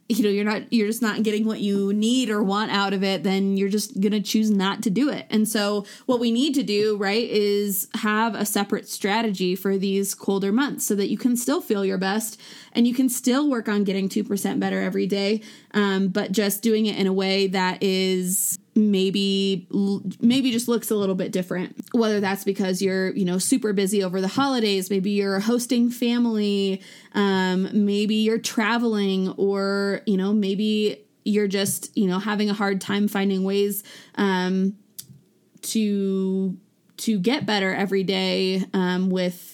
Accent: American